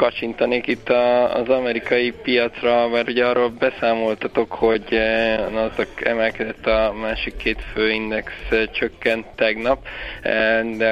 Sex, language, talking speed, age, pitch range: male, Hungarian, 110 wpm, 20-39, 105-115 Hz